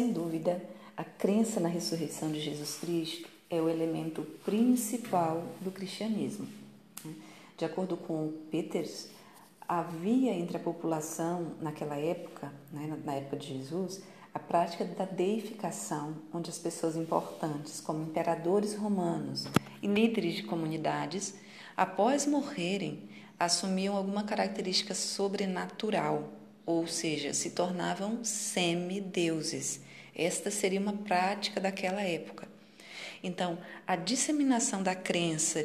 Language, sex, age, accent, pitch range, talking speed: Portuguese, female, 40-59, Brazilian, 165-205 Hz, 115 wpm